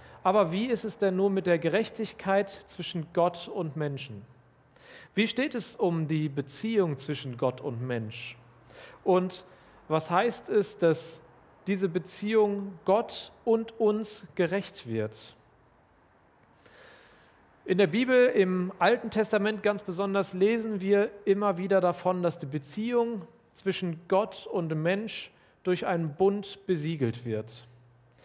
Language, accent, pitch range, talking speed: German, German, 150-200 Hz, 125 wpm